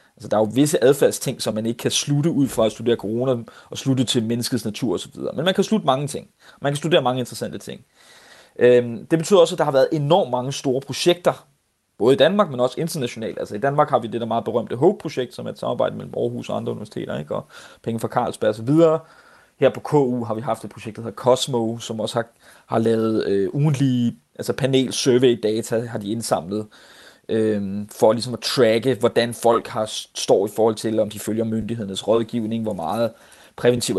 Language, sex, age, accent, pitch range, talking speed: Danish, male, 30-49, native, 110-130 Hz, 220 wpm